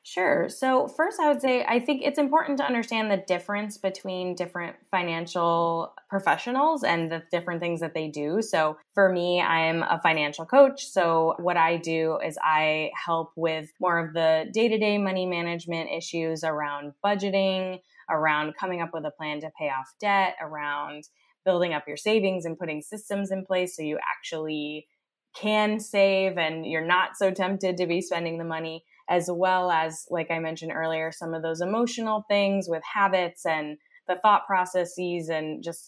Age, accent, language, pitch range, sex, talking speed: 20-39, American, English, 160-200 Hz, female, 175 wpm